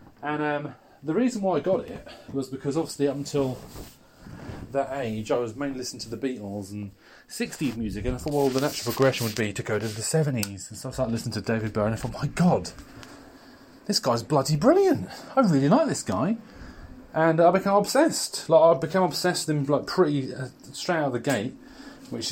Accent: British